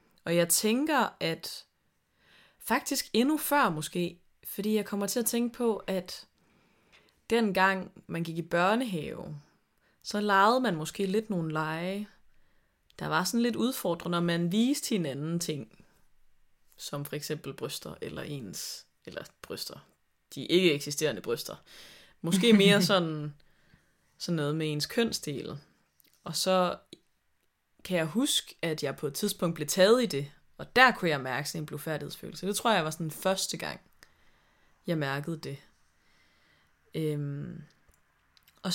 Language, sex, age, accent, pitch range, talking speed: Danish, female, 20-39, native, 155-210 Hz, 140 wpm